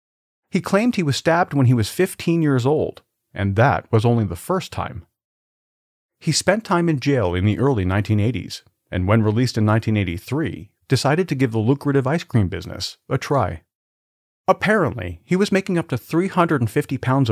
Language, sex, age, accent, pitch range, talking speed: English, male, 40-59, American, 100-145 Hz, 170 wpm